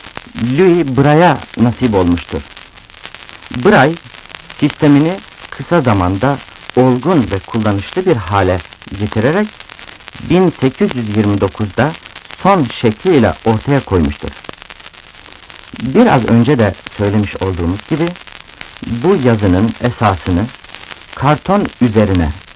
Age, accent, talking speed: 60-79, native, 80 wpm